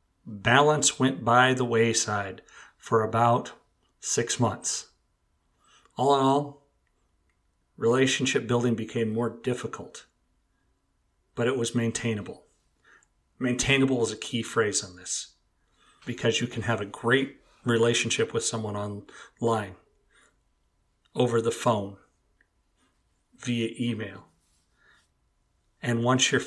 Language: English